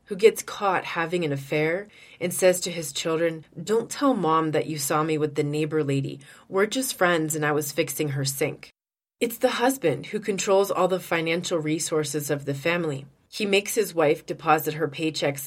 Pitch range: 150-190 Hz